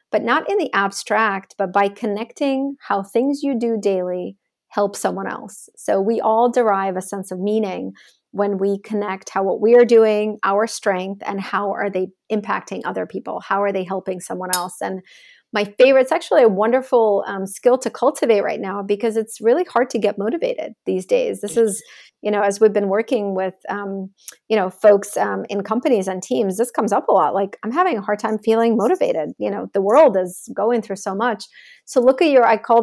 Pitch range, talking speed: 200-245 Hz, 210 wpm